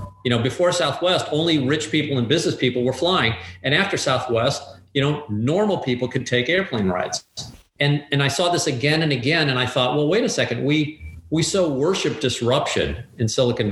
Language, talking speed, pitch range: English, 195 wpm, 110-140 Hz